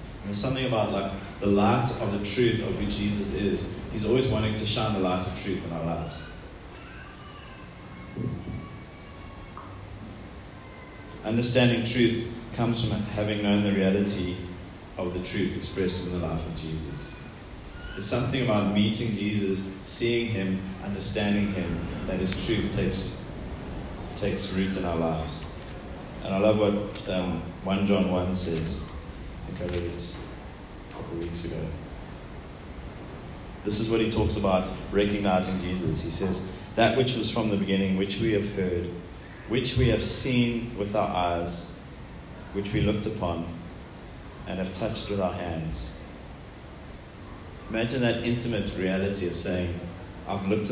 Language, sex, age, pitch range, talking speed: English, male, 30-49, 85-105 Hz, 145 wpm